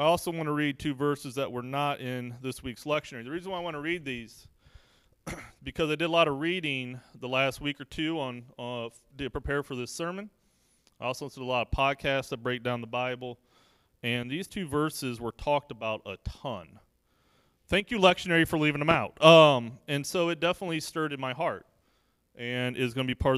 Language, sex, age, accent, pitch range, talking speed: English, male, 30-49, American, 125-170 Hz, 215 wpm